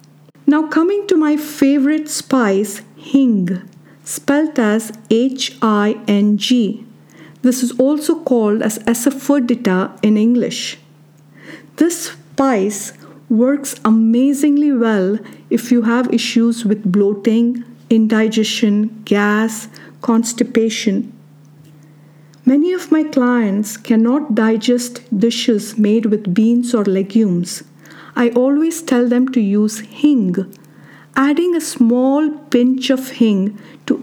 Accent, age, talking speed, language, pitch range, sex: Indian, 50-69, 100 wpm, English, 205-265 Hz, female